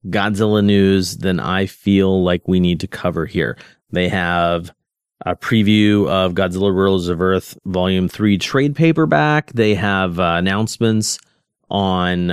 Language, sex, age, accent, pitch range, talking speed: English, male, 30-49, American, 95-115 Hz, 140 wpm